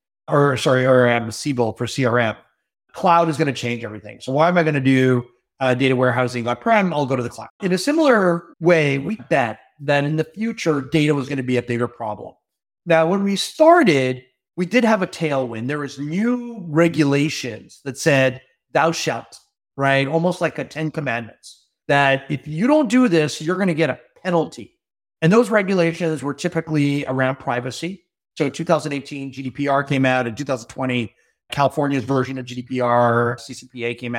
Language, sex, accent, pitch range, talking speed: English, male, American, 125-160 Hz, 175 wpm